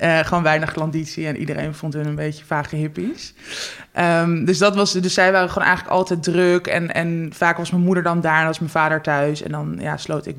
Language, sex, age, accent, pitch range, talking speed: Dutch, male, 20-39, Dutch, 160-180 Hz, 235 wpm